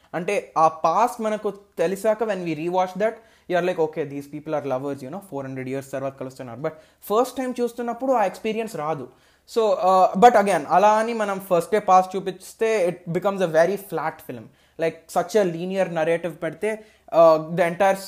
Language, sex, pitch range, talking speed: Telugu, male, 140-195 Hz, 185 wpm